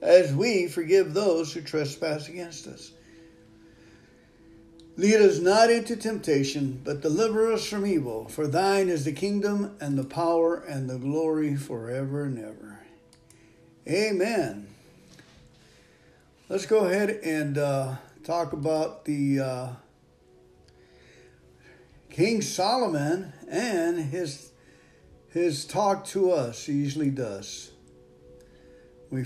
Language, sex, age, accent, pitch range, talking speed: English, male, 60-79, American, 125-175 Hz, 110 wpm